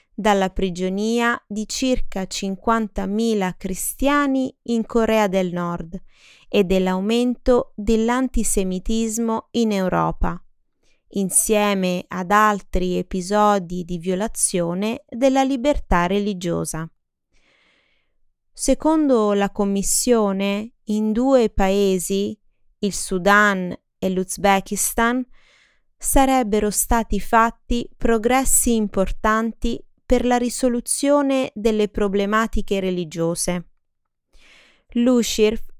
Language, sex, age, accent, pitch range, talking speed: Italian, female, 20-39, native, 190-235 Hz, 75 wpm